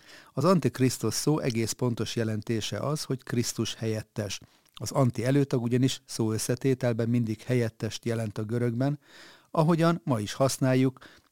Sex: male